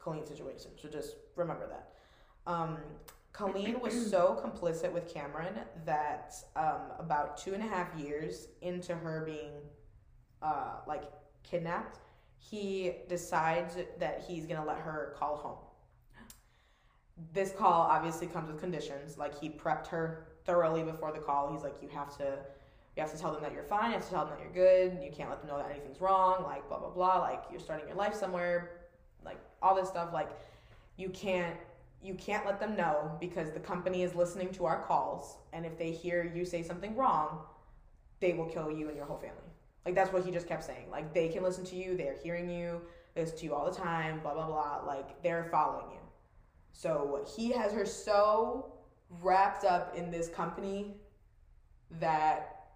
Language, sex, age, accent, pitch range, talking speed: English, female, 20-39, American, 150-185 Hz, 190 wpm